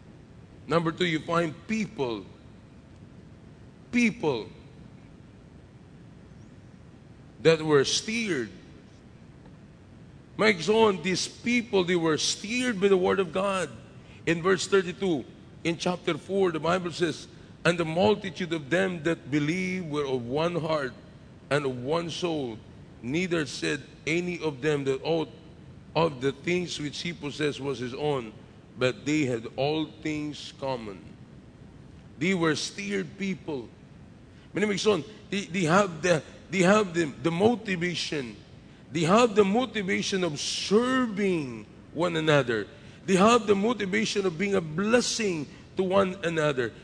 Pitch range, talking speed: 150-200 Hz, 130 wpm